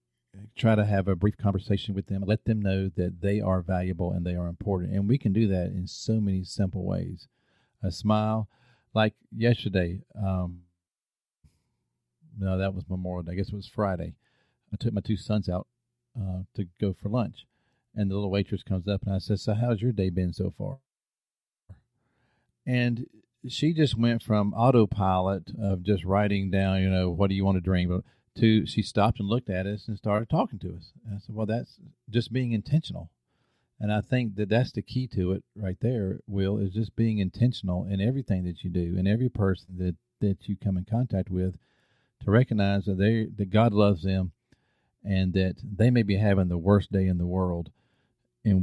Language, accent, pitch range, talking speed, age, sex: English, American, 95-110 Hz, 200 wpm, 40-59, male